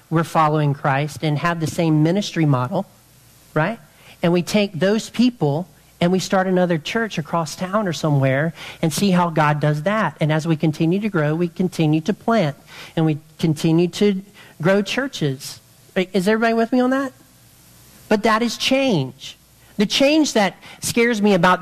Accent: American